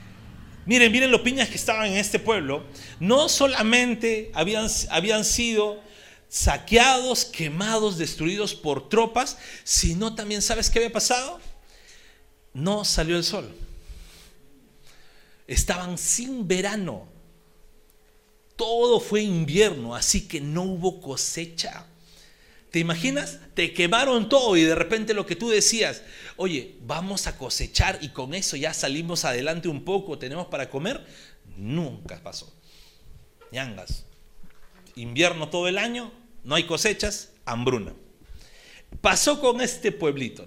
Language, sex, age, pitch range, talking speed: Spanish, male, 40-59, 160-225 Hz, 120 wpm